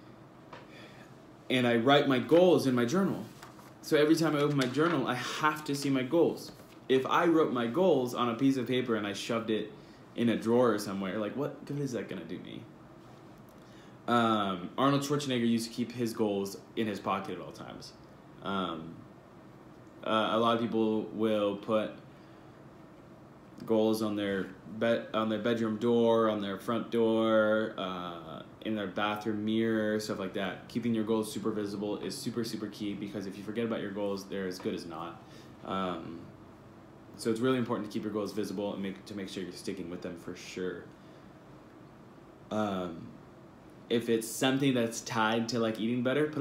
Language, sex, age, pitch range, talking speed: English, male, 20-39, 105-120 Hz, 185 wpm